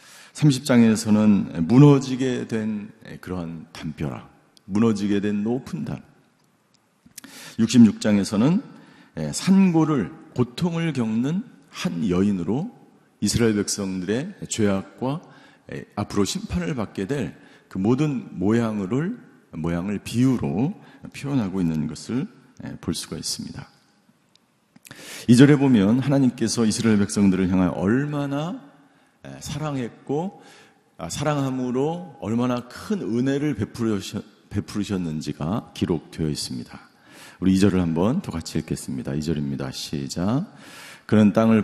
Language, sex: Korean, male